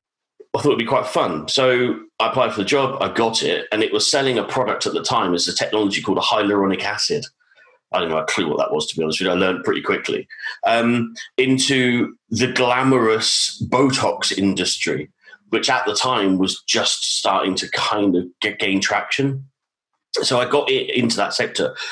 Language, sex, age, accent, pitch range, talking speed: English, male, 40-59, British, 95-130 Hz, 195 wpm